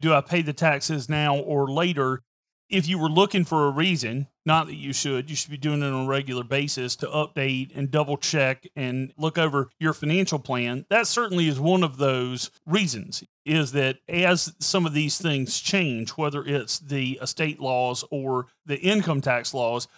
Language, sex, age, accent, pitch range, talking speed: English, male, 40-59, American, 135-165 Hz, 190 wpm